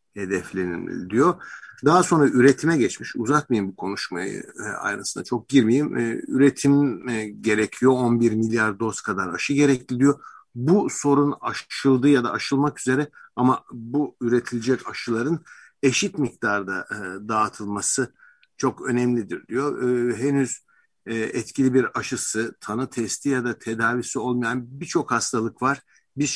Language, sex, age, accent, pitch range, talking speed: Turkish, male, 60-79, native, 115-140 Hz, 120 wpm